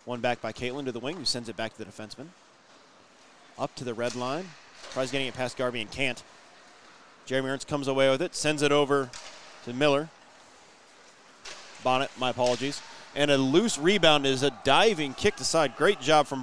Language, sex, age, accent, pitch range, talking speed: English, male, 30-49, American, 135-180 Hz, 195 wpm